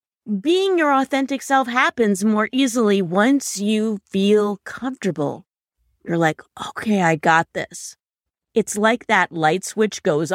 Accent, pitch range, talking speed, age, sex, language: American, 175-230 Hz, 135 wpm, 30-49, female, English